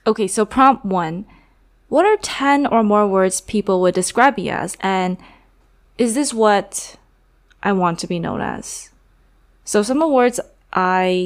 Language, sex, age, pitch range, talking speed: English, female, 20-39, 180-240 Hz, 165 wpm